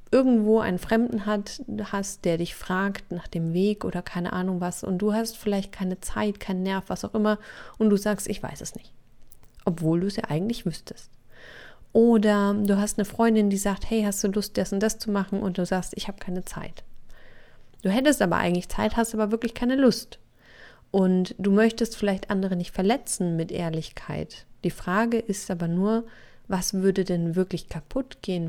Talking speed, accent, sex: 195 wpm, German, female